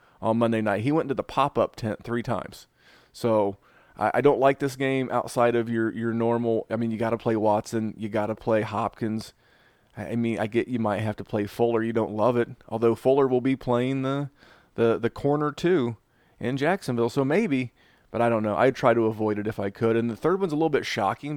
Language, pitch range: English, 110-135 Hz